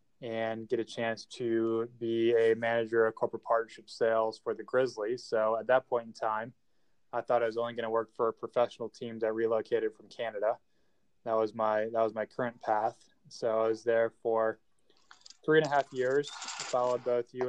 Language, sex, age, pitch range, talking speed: English, male, 20-39, 115-125 Hz, 195 wpm